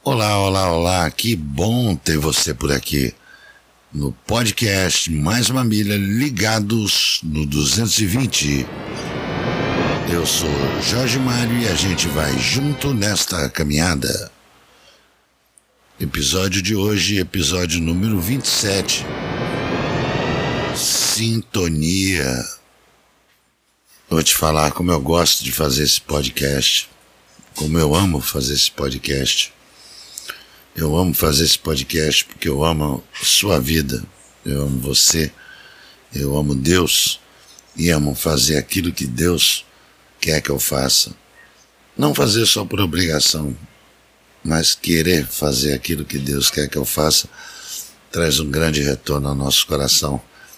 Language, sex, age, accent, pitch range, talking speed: Portuguese, male, 60-79, Brazilian, 75-100 Hz, 115 wpm